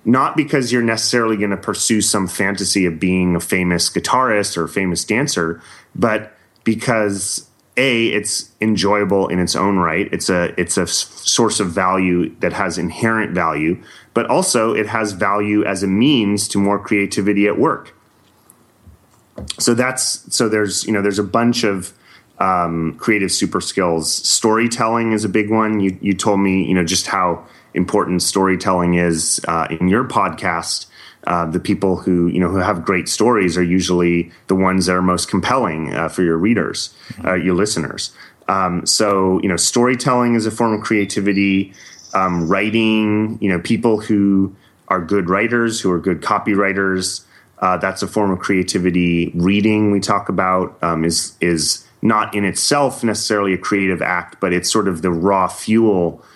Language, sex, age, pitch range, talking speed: English, male, 30-49, 90-110 Hz, 170 wpm